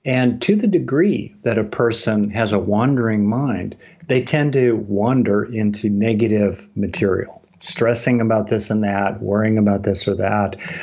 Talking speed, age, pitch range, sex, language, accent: 155 wpm, 50-69, 105-125 Hz, male, English, American